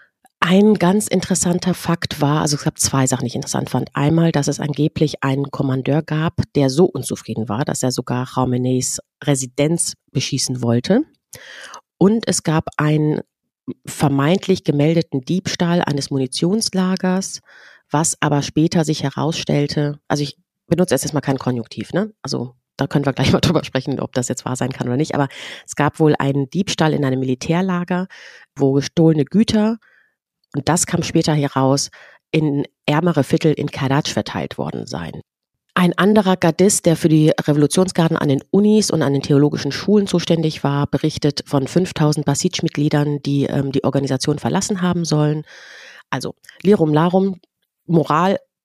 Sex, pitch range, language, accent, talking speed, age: female, 140-180 Hz, German, German, 155 wpm, 30-49